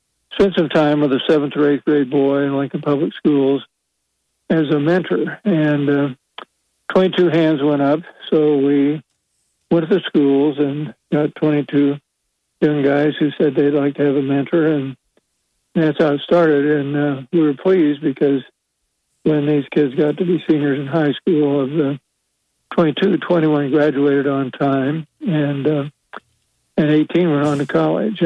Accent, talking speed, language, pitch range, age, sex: American, 170 wpm, English, 145-160 Hz, 60-79, male